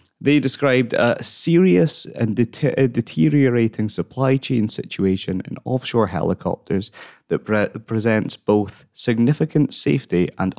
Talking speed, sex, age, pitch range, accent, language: 100 wpm, male, 20-39, 95-135 Hz, British, English